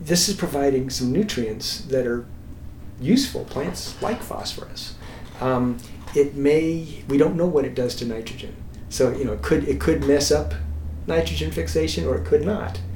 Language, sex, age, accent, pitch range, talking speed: English, male, 40-59, American, 100-135 Hz, 160 wpm